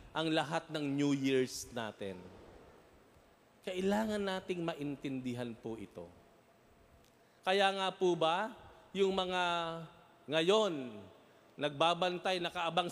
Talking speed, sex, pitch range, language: 95 wpm, male, 145-195 Hz, Filipino